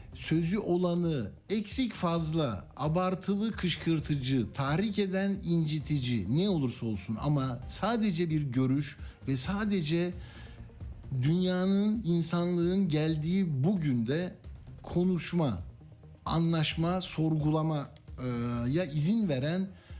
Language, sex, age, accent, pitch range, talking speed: Turkish, male, 60-79, native, 135-185 Hz, 85 wpm